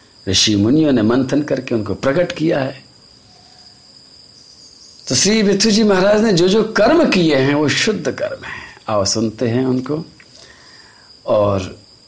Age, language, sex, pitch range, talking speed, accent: 50-69, Hindi, male, 125-170 Hz, 140 wpm, native